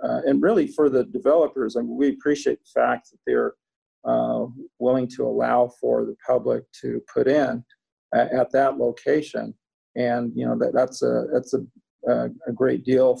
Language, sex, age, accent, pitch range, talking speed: English, male, 50-69, American, 120-140 Hz, 185 wpm